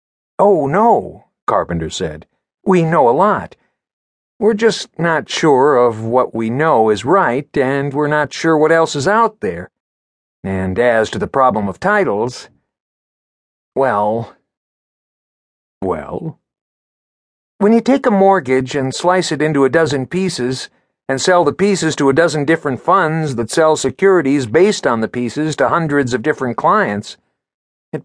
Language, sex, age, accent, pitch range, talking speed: English, male, 50-69, American, 115-175 Hz, 150 wpm